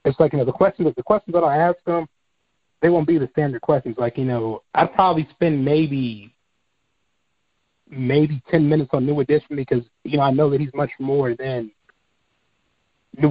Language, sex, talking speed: English, male, 190 wpm